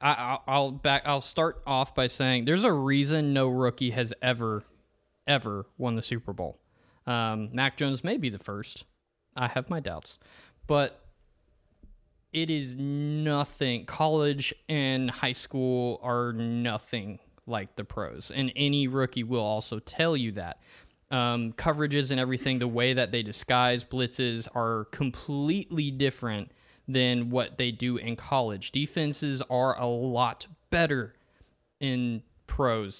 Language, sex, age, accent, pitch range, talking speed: English, male, 20-39, American, 115-140 Hz, 140 wpm